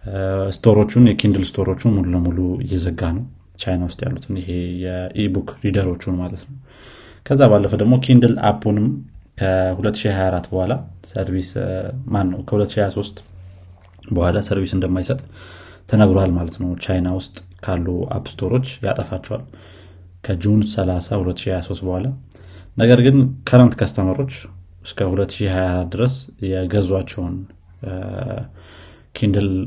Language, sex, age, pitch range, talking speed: Amharic, male, 30-49, 90-110 Hz, 95 wpm